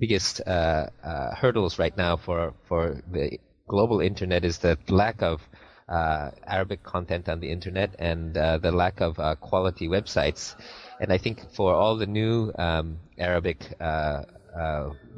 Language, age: Arabic, 30-49